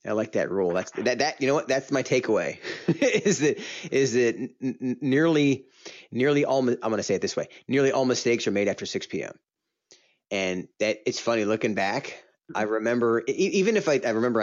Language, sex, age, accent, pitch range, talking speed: English, male, 20-39, American, 105-130 Hz, 205 wpm